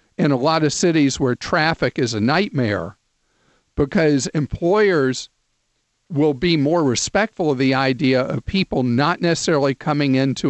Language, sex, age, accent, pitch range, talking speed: English, male, 50-69, American, 125-155 Hz, 145 wpm